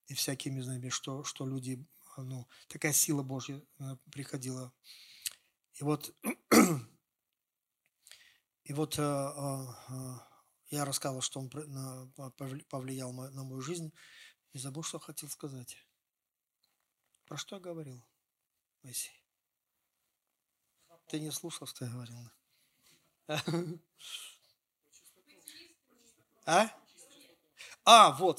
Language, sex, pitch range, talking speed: Russian, male, 130-155 Hz, 90 wpm